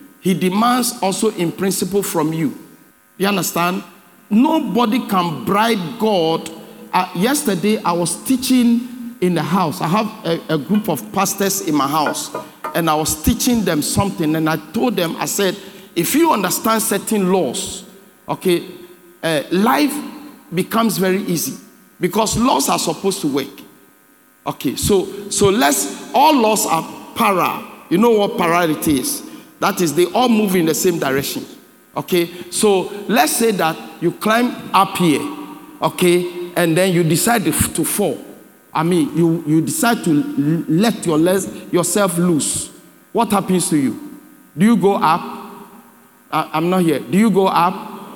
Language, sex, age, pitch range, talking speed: English, male, 50-69, 175-230 Hz, 155 wpm